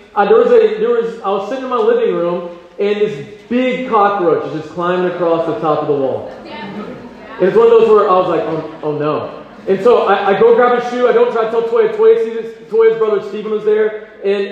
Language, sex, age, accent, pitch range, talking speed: English, male, 30-49, American, 205-300 Hz, 250 wpm